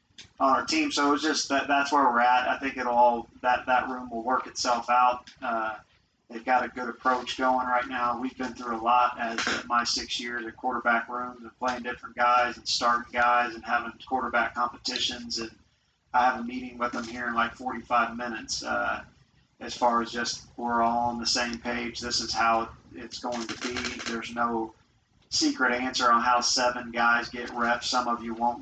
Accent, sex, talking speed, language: American, male, 205 wpm, English